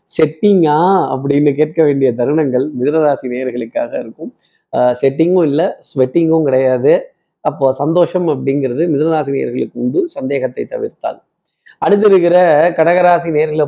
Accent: native